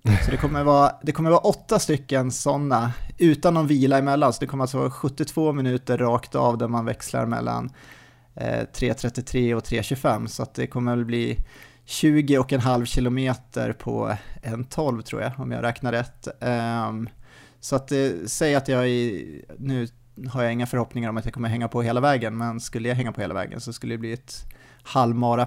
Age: 30-49